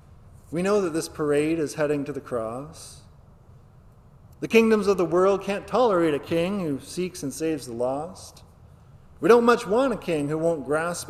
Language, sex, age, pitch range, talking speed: English, male, 40-59, 135-180 Hz, 185 wpm